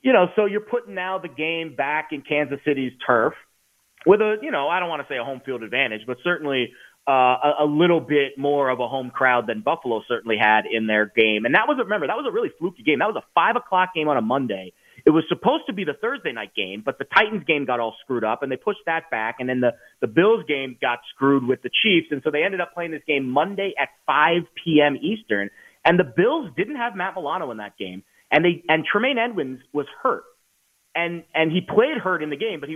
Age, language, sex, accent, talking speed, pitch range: 30-49, English, male, American, 255 wpm, 130-185 Hz